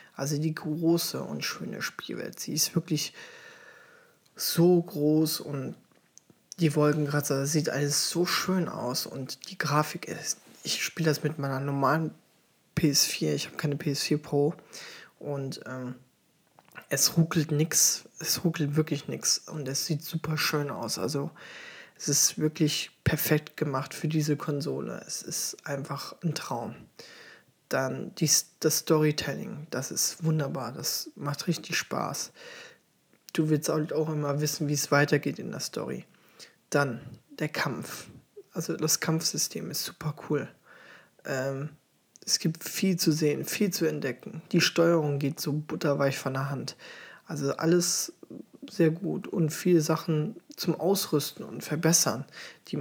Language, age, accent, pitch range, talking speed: German, 20-39, German, 145-170 Hz, 140 wpm